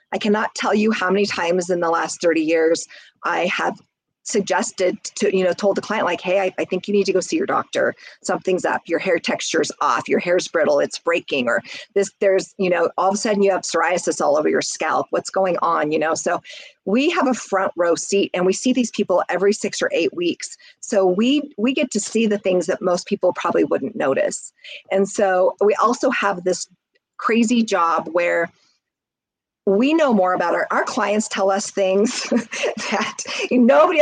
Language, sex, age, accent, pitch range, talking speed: English, female, 40-59, American, 185-240 Hz, 205 wpm